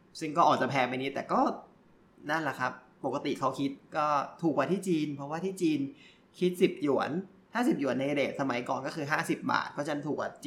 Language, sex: Thai, male